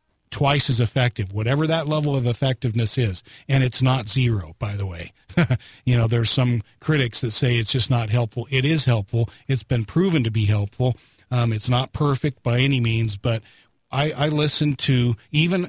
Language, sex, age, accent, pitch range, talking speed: English, male, 40-59, American, 115-140 Hz, 185 wpm